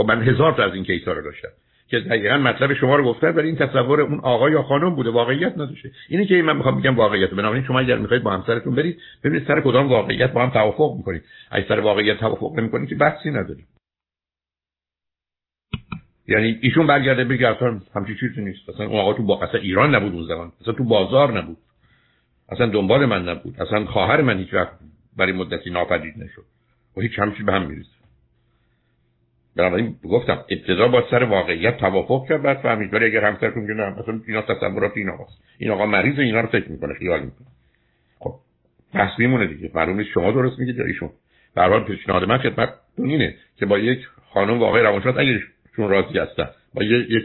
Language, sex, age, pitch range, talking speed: Persian, male, 60-79, 95-130 Hz, 195 wpm